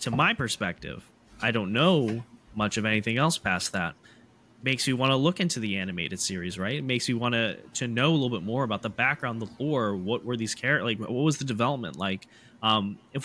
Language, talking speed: English, 220 wpm